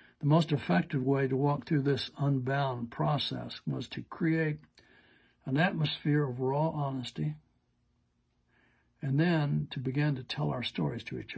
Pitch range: 125-155 Hz